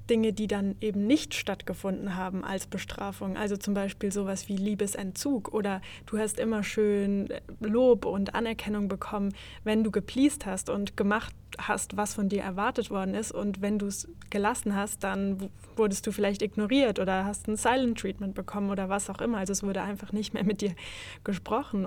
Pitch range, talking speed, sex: 195-215 Hz, 185 wpm, female